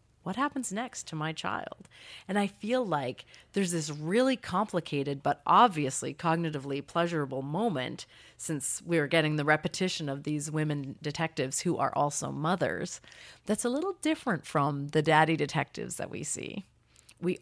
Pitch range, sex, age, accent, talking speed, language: 150-220 Hz, female, 30-49, American, 150 wpm, English